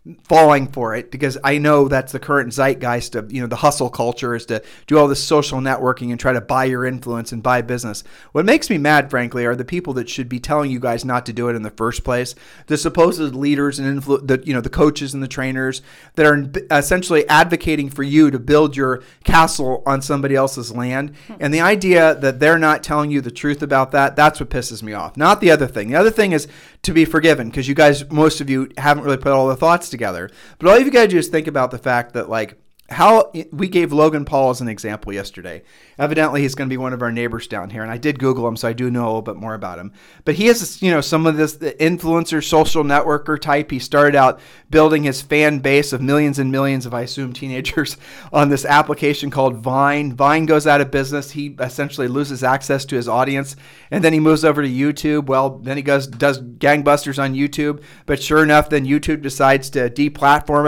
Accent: American